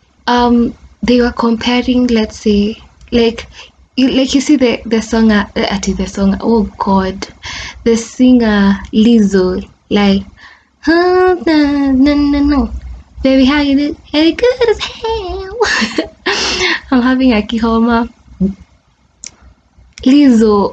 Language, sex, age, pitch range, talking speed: English, female, 20-39, 205-245 Hz, 105 wpm